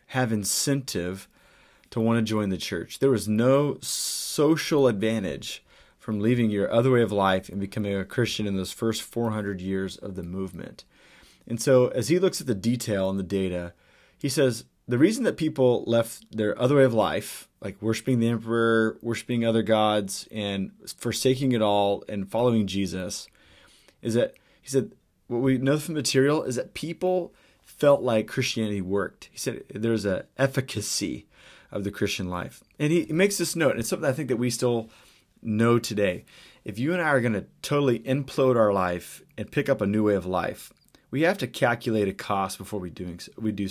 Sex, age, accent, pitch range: male, 30-49, American, 100-130 Hz